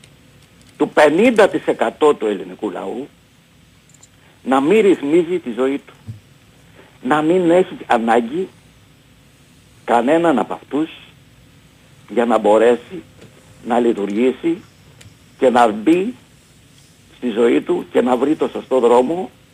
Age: 60-79